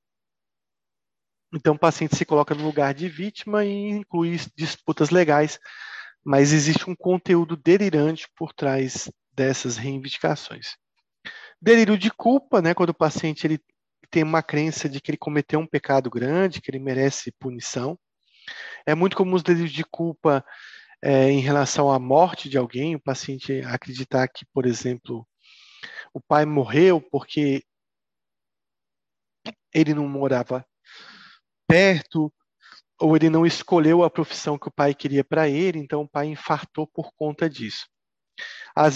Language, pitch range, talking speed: Italian, 145-170 Hz, 140 wpm